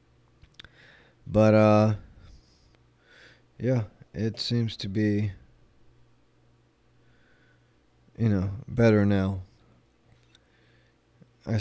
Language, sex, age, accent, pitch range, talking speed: English, male, 20-39, American, 95-110 Hz, 60 wpm